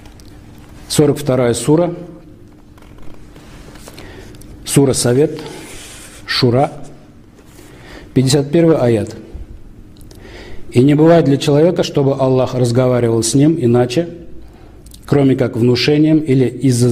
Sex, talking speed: male, 80 wpm